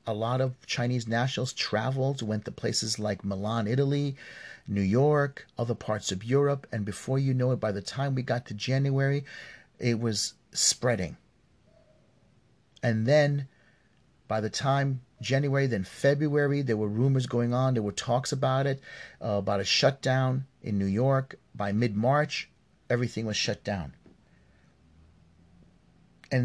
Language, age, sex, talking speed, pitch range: English, 40-59, male, 150 wpm, 105-130 Hz